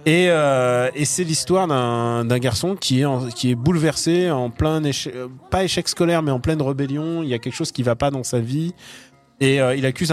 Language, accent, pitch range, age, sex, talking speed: French, French, 120-155 Hz, 20-39, male, 235 wpm